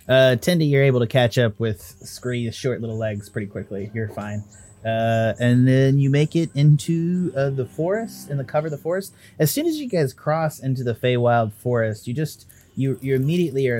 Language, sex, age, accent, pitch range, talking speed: English, male, 30-49, American, 115-140 Hz, 210 wpm